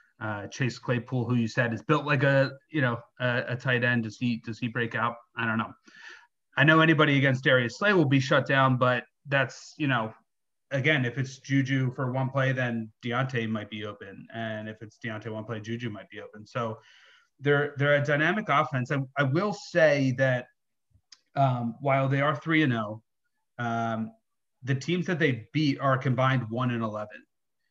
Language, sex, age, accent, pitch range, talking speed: English, male, 30-49, American, 115-140 Hz, 195 wpm